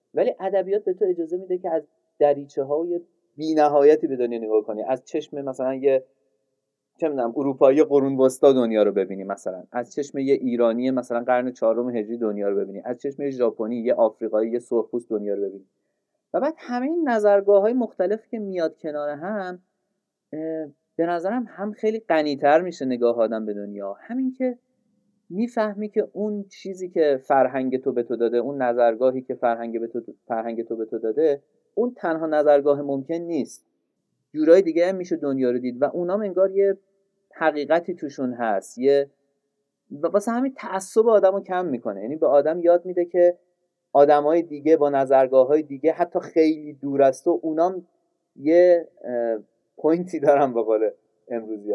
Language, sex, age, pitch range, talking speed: Persian, male, 30-49, 125-180 Hz, 170 wpm